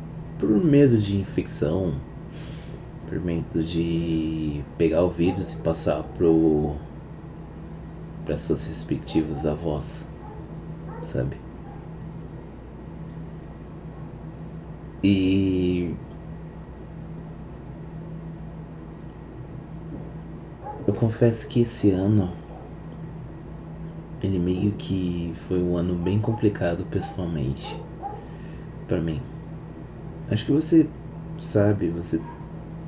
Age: 30-49